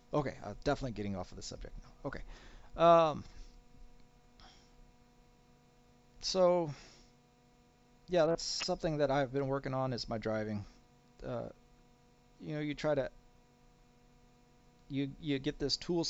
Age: 40-59